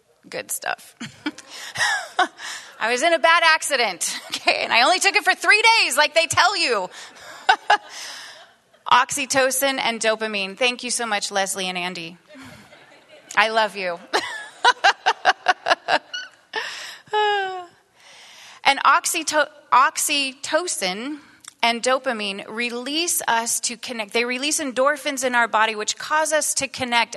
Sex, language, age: female, English, 30-49